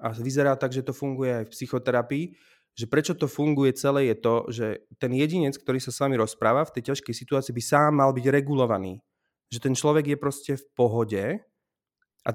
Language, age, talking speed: Slovak, 20-39, 200 wpm